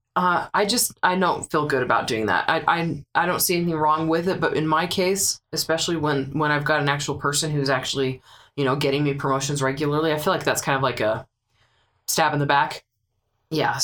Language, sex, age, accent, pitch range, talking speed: English, female, 20-39, American, 145-185 Hz, 225 wpm